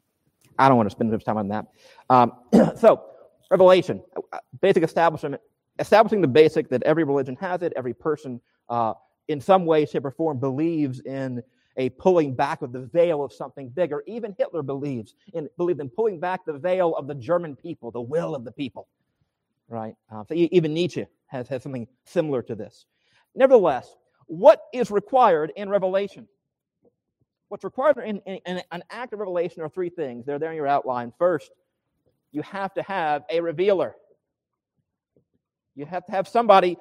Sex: male